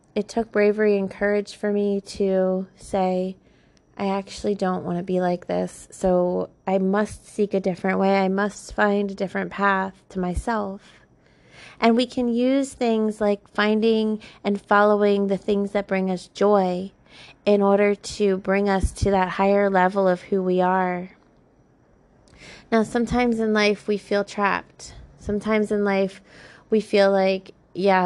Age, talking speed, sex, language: 20-39, 160 wpm, female, English